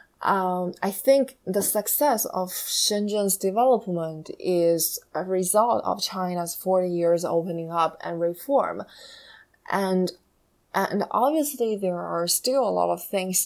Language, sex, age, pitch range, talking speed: English, female, 20-39, 170-210 Hz, 130 wpm